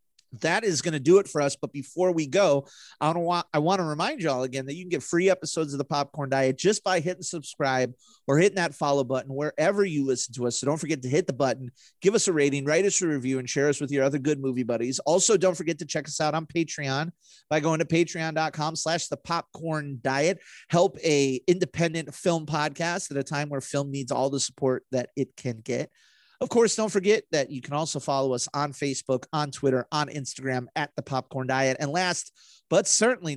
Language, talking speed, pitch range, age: English, 225 wpm, 135-170 Hz, 30-49